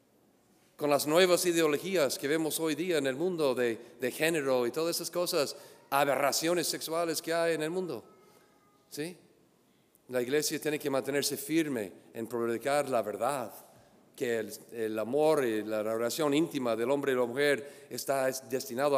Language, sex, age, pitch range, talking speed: English, male, 40-59, 130-165 Hz, 160 wpm